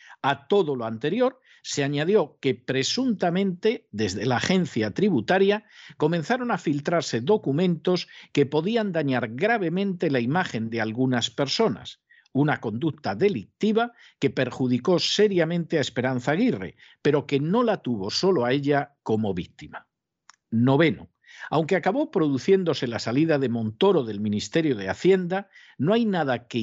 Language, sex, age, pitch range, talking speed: Spanish, male, 50-69, 125-190 Hz, 135 wpm